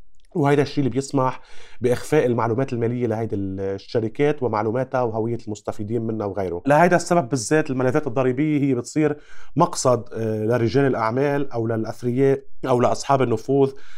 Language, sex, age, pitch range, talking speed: Arabic, male, 30-49, 110-140 Hz, 125 wpm